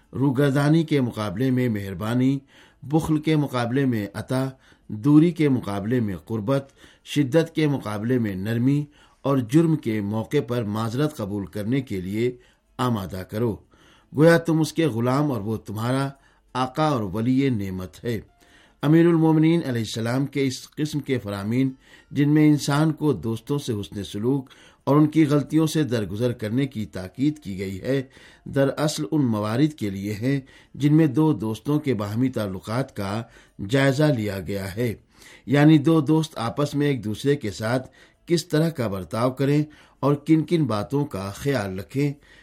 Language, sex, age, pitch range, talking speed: Urdu, male, 60-79, 110-150 Hz, 160 wpm